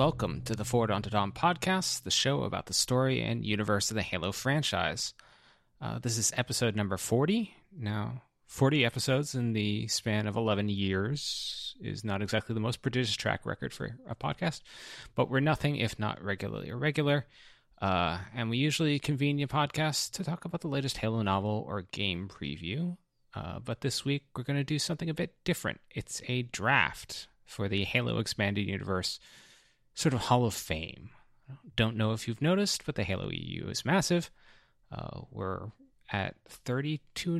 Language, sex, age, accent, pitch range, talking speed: English, male, 30-49, American, 105-145 Hz, 175 wpm